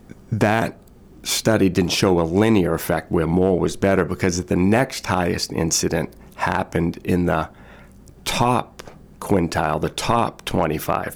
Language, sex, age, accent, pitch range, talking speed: English, male, 40-59, American, 85-100 Hz, 130 wpm